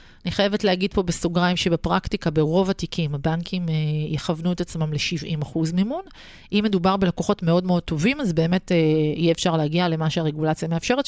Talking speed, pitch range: 150 wpm, 165-220 Hz